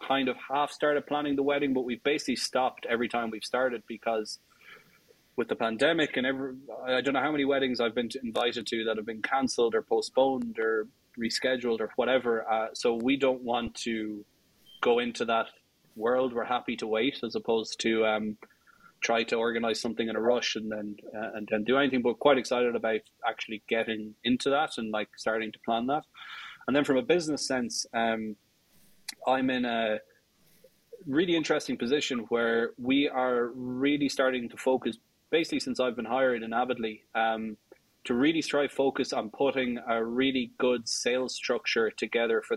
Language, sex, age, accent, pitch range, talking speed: English, male, 20-39, Irish, 115-135 Hz, 175 wpm